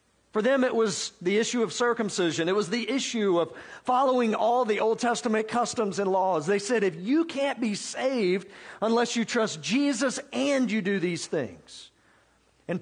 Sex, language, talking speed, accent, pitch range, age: male, English, 180 wpm, American, 185-235 Hz, 50-69